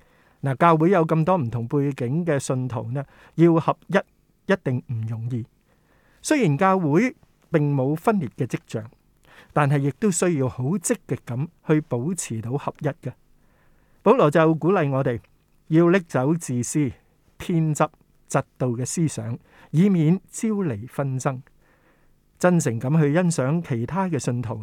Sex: male